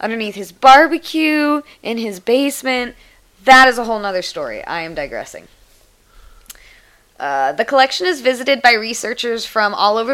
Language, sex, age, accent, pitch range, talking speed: English, female, 20-39, American, 185-240 Hz, 150 wpm